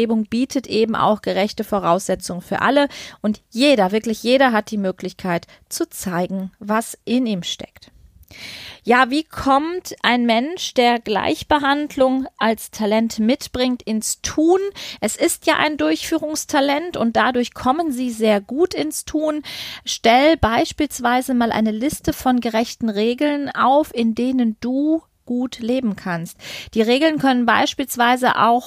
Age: 30-49